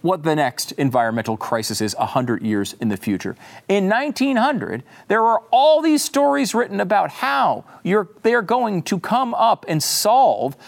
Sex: male